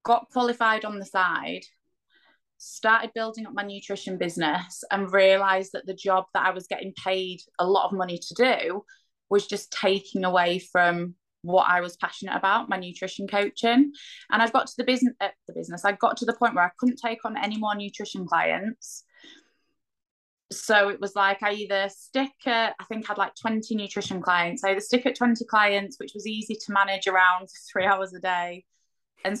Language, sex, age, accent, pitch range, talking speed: English, female, 20-39, British, 190-235 Hz, 190 wpm